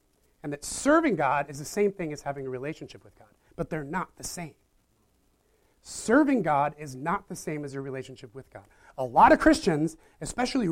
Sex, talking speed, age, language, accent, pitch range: male, 195 wpm, 30-49, English, American, 145-205 Hz